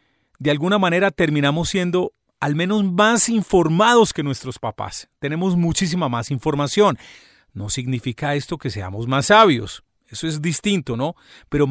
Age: 40-59